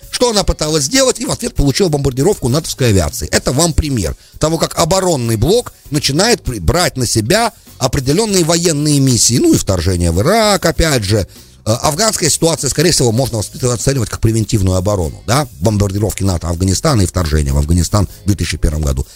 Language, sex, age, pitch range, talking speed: English, male, 50-69, 95-155 Hz, 165 wpm